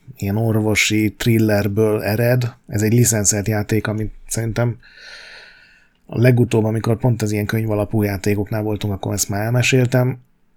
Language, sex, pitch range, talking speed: Hungarian, male, 105-125 Hz, 135 wpm